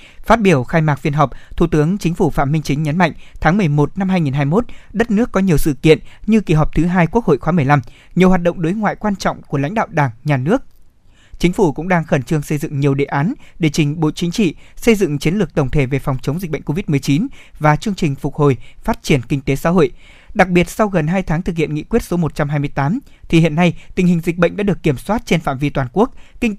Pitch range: 145-185 Hz